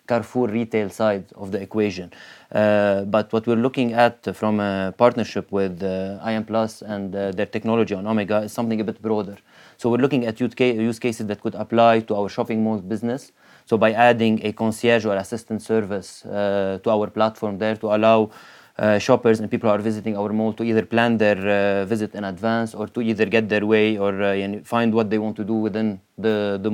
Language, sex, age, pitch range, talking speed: English, male, 20-39, 105-115 Hz, 210 wpm